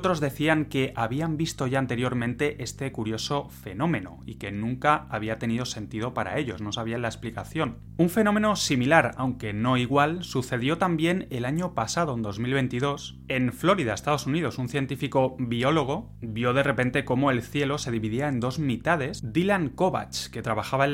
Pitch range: 115-150 Hz